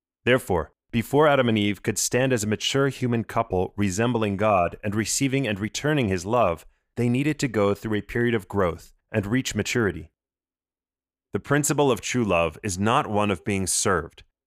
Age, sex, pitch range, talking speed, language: 30-49, male, 105-130 Hz, 180 wpm, English